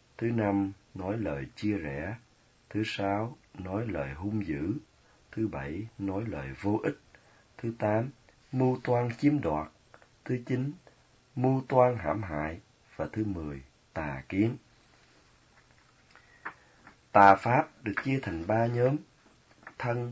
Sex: male